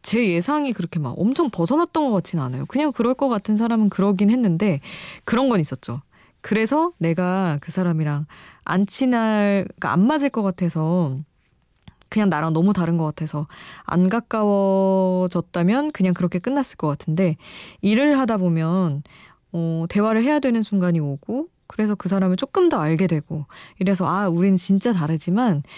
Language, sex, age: Korean, female, 20-39